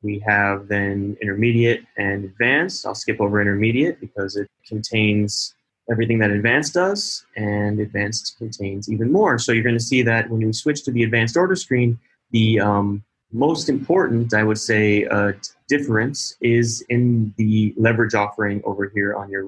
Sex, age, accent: male, 20-39, American